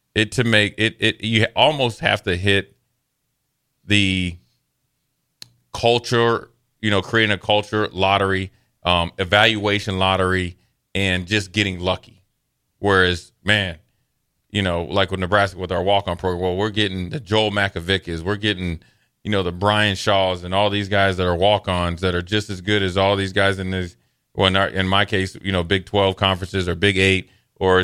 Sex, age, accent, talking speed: male, 30-49, American, 185 wpm